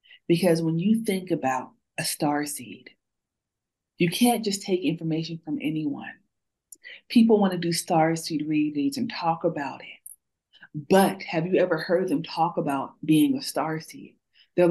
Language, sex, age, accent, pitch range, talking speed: English, female, 40-59, American, 155-195 Hz, 155 wpm